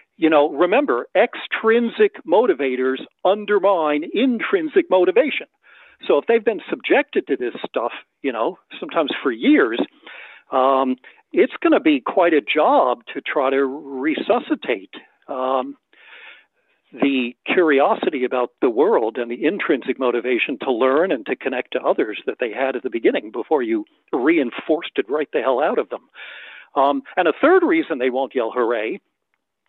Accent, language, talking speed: American, English, 150 wpm